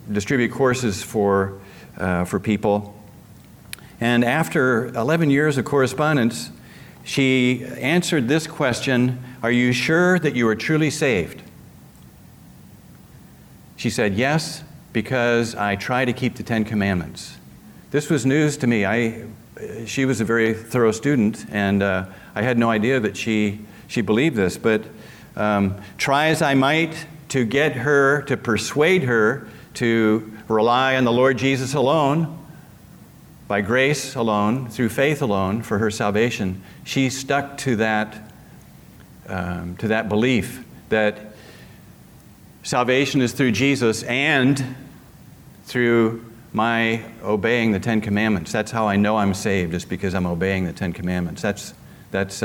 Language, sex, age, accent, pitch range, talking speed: English, male, 50-69, American, 105-135 Hz, 140 wpm